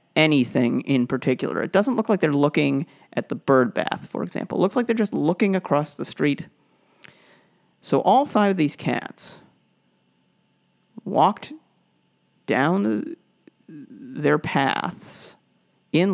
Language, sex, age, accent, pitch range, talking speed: English, male, 40-59, American, 135-190 Hz, 135 wpm